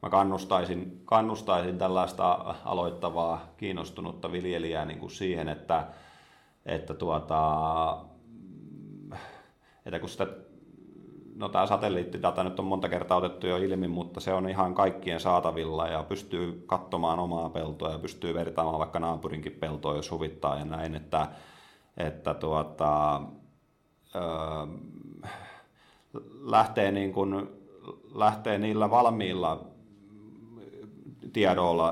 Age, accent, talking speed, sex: 30-49, native, 105 wpm, male